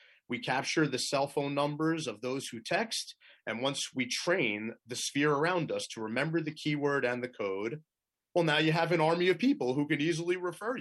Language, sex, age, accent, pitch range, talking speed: English, male, 30-49, American, 115-155 Hz, 205 wpm